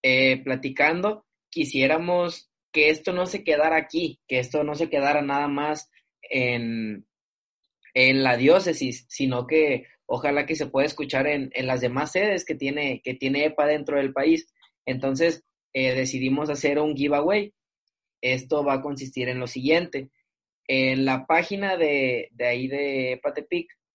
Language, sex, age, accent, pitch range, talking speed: Spanish, male, 20-39, Mexican, 130-165 Hz, 155 wpm